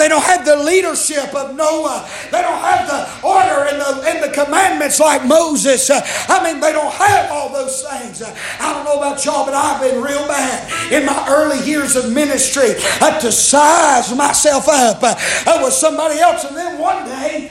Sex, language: male, English